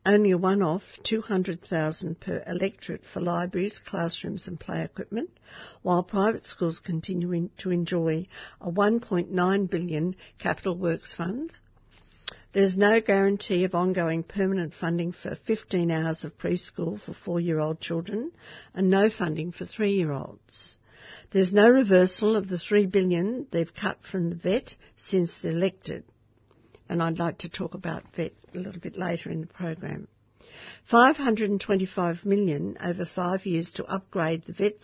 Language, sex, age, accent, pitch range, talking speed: English, female, 60-79, Australian, 170-200 Hz, 145 wpm